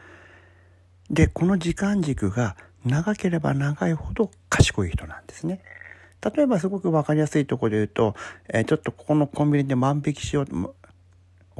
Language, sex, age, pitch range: Japanese, male, 60-79, 90-150 Hz